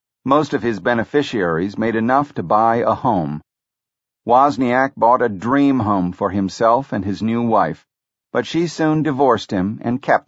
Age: 50-69